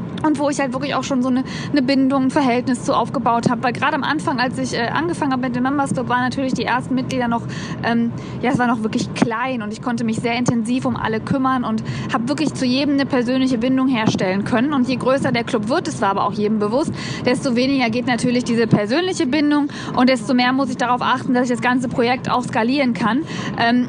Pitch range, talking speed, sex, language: 230-265 Hz, 240 wpm, female, German